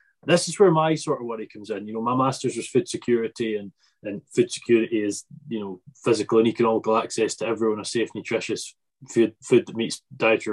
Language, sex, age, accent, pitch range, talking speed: English, male, 20-39, British, 115-145 Hz, 210 wpm